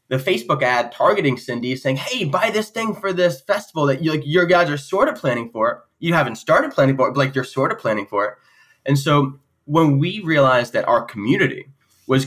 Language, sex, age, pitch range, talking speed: English, male, 10-29, 120-150 Hz, 230 wpm